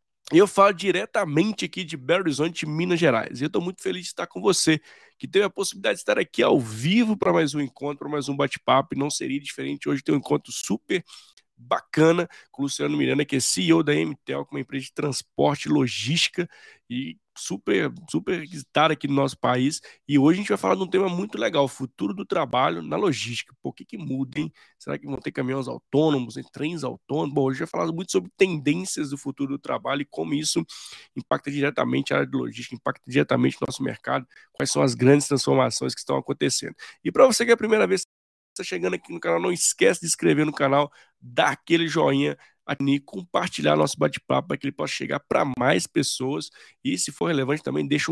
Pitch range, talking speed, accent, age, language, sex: 135-170 Hz, 215 wpm, Brazilian, 20-39, Portuguese, male